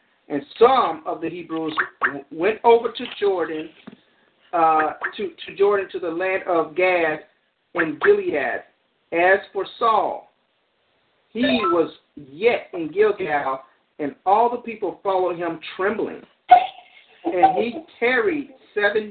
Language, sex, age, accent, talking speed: English, male, 50-69, American, 120 wpm